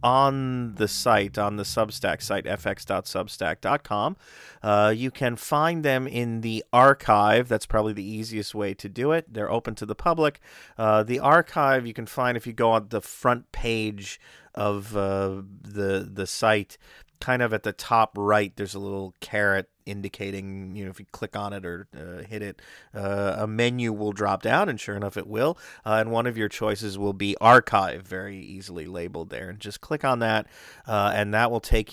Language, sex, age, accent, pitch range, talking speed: English, male, 40-59, American, 100-115 Hz, 190 wpm